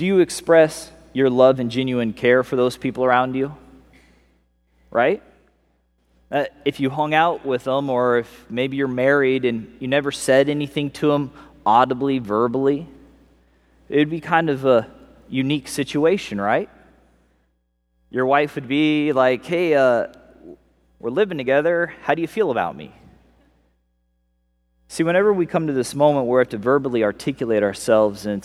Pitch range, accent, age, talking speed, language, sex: 105-150 Hz, American, 20-39, 155 wpm, English, male